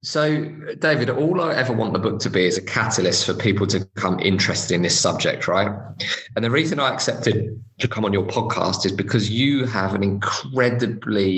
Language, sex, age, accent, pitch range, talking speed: English, male, 20-39, British, 95-125 Hz, 200 wpm